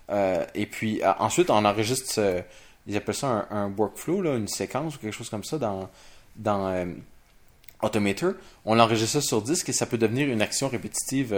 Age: 20-39